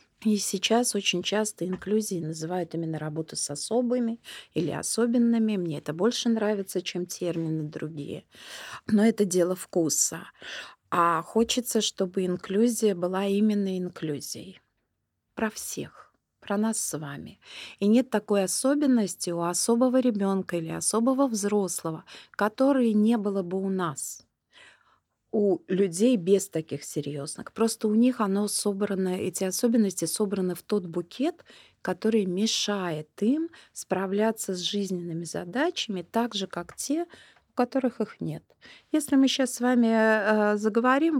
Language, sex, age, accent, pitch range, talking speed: Russian, female, 30-49, native, 180-235 Hz, 130 wpm